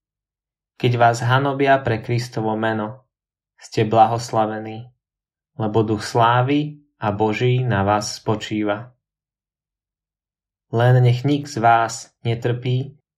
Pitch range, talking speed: 110-130 Hz, 100 wpm